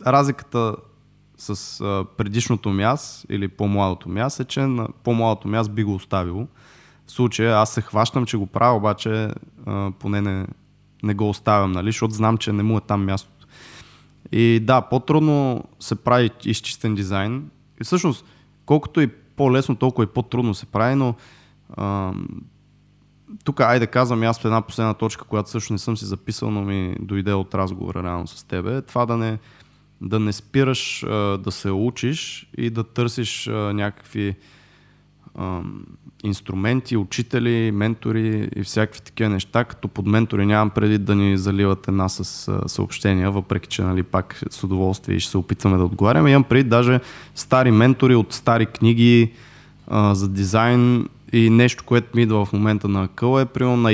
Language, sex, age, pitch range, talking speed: Bulgarian, male, 20-39, 100-125 Hz, 160 wpm